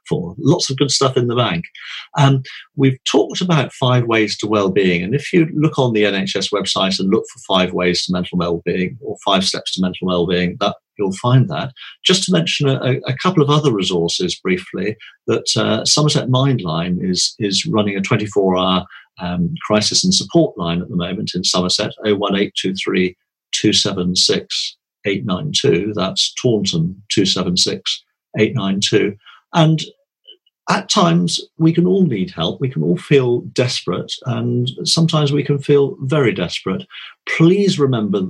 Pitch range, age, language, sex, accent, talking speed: 95-145 Hz, 40-59, English, male, British, 165 wpm